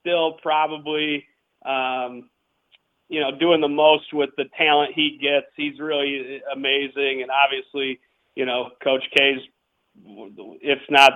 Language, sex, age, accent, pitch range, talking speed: English, male, 40-59, American, 140-175 Hz, 130 wpm